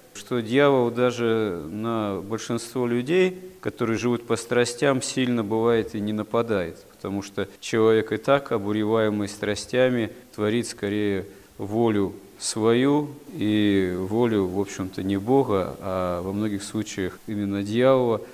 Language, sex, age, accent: Russian, male, 40-59, native